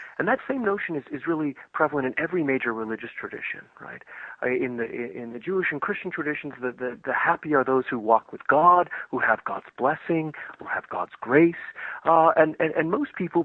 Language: English